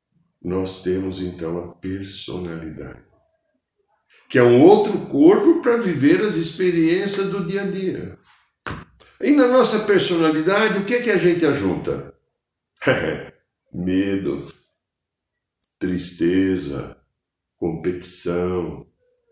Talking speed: 95 wpm